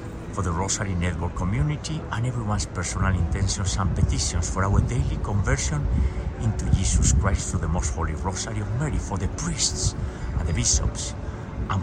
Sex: male